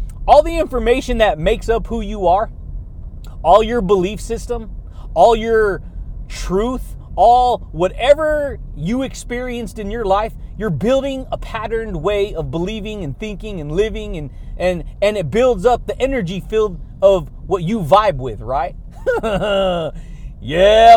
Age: 30-49